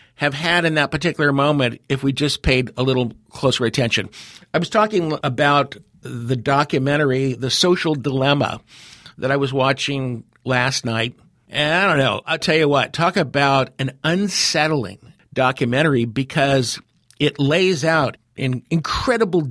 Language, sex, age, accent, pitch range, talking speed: English, male, 50-69, American, 135-185 Hz, 150 wpm